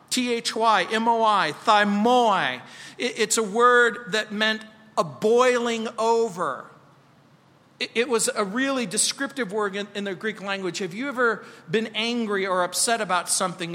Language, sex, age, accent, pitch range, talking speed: English, male, 40-59, American, 180-225 Hz, 130 wpm